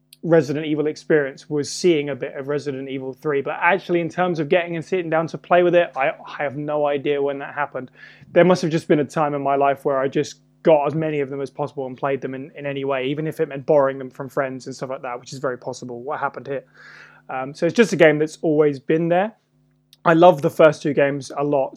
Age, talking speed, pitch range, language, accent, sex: 20-39, 265 wpm, 140-170 Hz, English, British, male